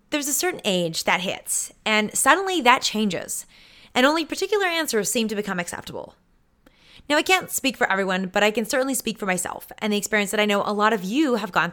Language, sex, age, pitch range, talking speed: English, female, 20-39, 190-285 Hz, 220 wpm